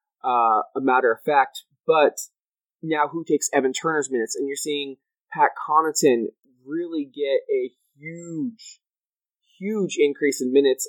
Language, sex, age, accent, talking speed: English, male, 20-39, American, 140 wpm